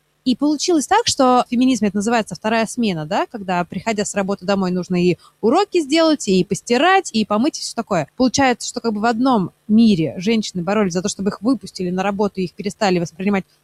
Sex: female